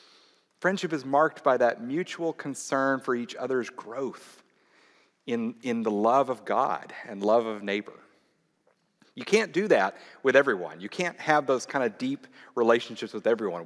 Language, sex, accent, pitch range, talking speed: English, male, American, 130-175 Hz, 165 wpm